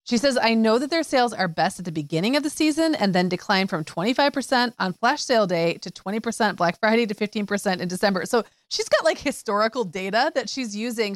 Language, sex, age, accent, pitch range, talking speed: English, female, 30-49, American, 180-245 Hz, 220 wpm